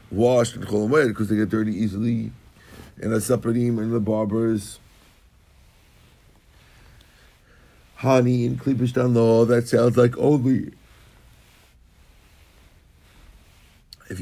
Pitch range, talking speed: 95-125 Hz, 100 wpm